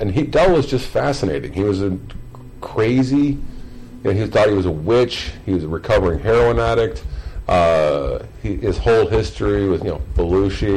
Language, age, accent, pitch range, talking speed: English, 50-69, American, 90-125 Hz, 180 wpm